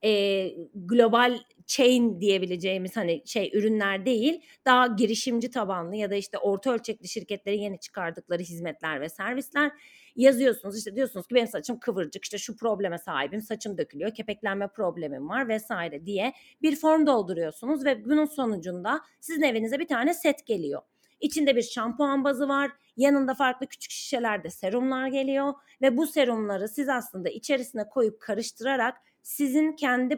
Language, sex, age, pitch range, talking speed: Turkish, female, 30-49, 210-280 Hz, 145 wpm